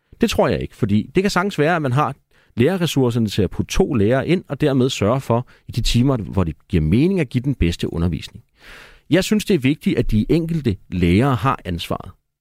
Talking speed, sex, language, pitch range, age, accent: 220 wpm, male, Danish, 100-135 Hz, 40-59, native